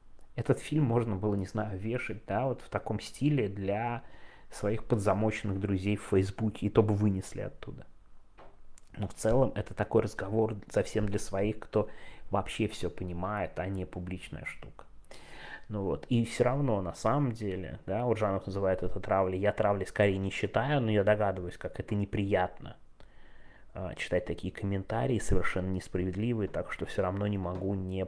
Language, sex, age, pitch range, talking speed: Russian, male, 20-39, 90-110 Hz, 165 wpm